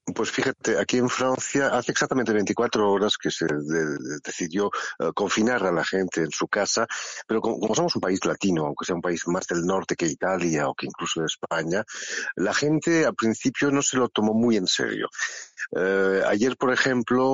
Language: Spanish